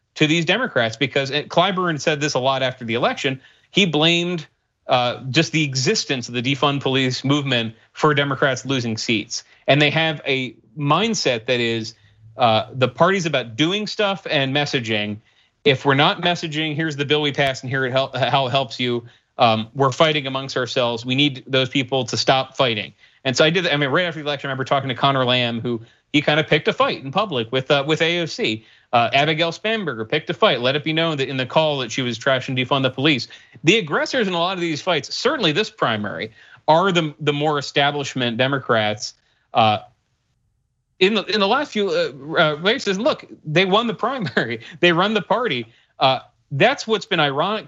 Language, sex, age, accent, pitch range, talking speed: English, male, 30-49, American, 125-160 Hz, 205 wpm